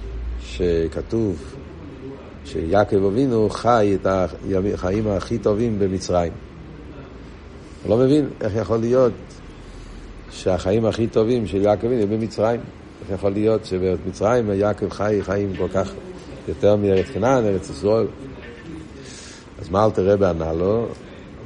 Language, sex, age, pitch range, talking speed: Hebrew, male, 60-79, 95-110 Hz, 115 wpm